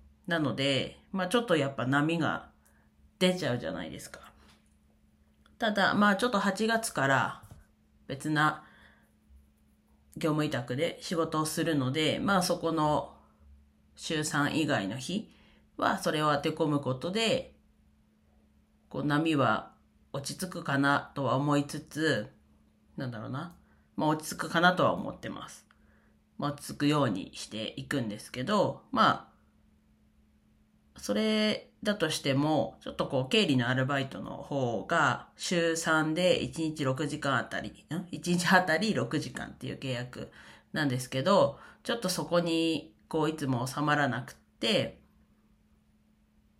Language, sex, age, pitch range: Japanese, female, 40-59, 120-170 Hz